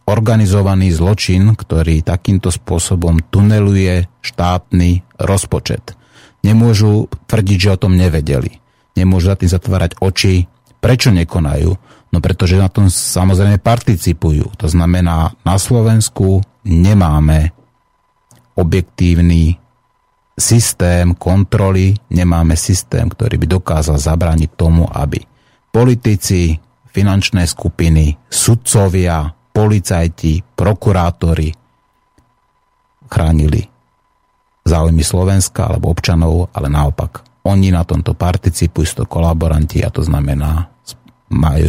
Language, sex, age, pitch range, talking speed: Slovak, male, 30-49, 85-100 Hz, 95 wpm